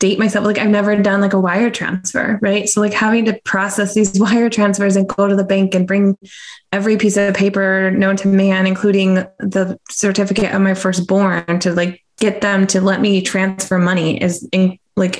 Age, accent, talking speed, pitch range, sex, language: 20-39, American, 195 wpm, 180-205 Hz, female, English